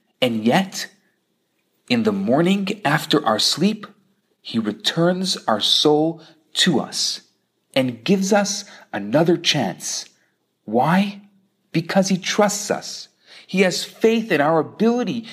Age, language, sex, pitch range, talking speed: 40-59, English, male, 160-205 Hz, 115 wpm